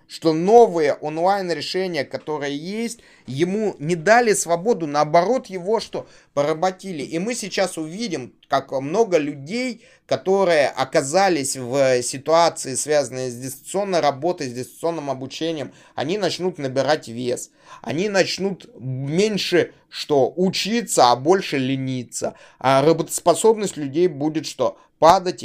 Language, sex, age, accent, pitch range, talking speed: Russian, male, 30-49, native, 135-185 Hz, 115 wpm